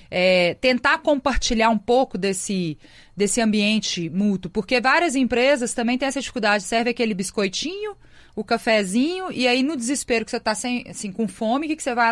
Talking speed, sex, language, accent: 165 wpm, female, Portuguese, Brazilian